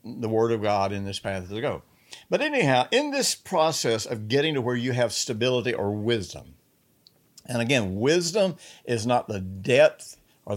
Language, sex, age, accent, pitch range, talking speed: English, male, 60-79, American, 110-135 Hz, 175 wpm